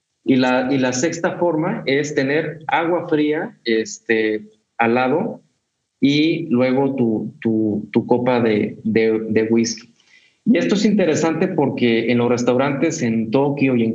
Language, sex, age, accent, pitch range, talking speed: Spanish, male, 30-49, Mexican, 115-150 Hz, 150 wpm